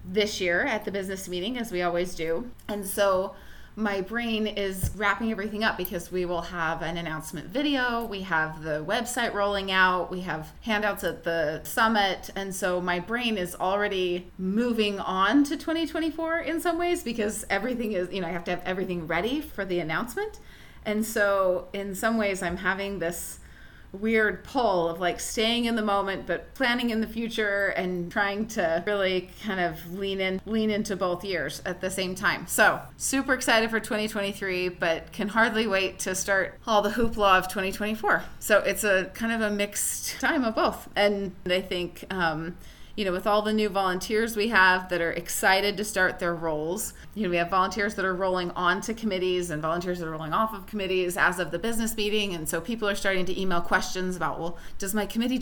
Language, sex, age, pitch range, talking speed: English, female, 30-49, 180-215 Hz, 200 wpm